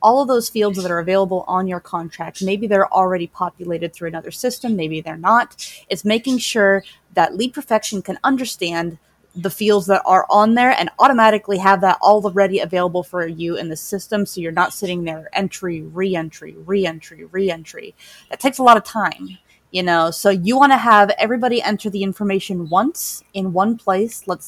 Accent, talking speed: American, 190 wpm